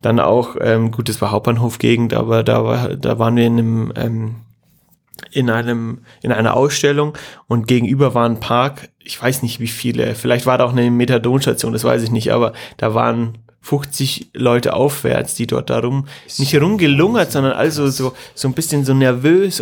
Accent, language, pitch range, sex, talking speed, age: German, German, 120-145 Hz, male, 185 wpm, 30-49